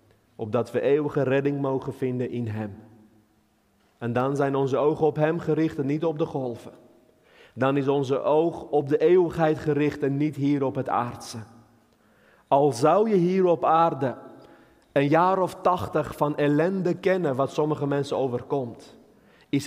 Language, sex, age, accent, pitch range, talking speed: Dutch, male, 30-49, Dutch, 115-155 Hz, 160 wpm